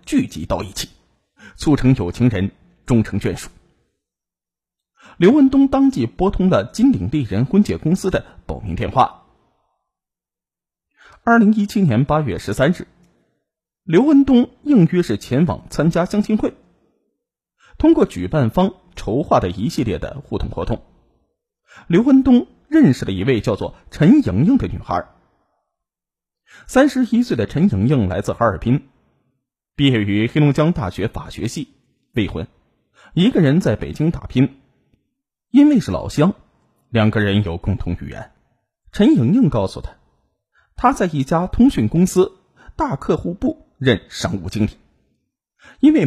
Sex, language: male, Chinese